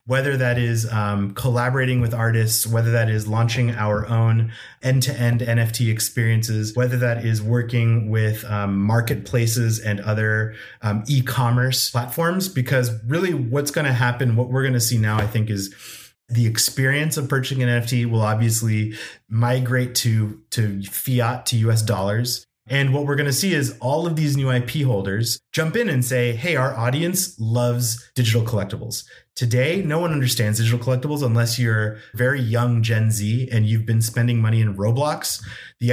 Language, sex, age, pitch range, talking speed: English, male, 30-49, 115-130 Hz, 170 wpm